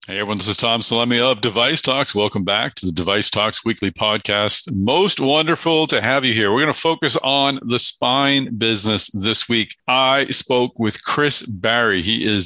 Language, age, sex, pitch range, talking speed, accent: English, 50-69, male, 105-130 Hz, 195 wpm, American